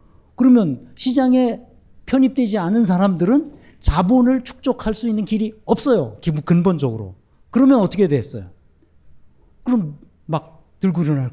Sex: male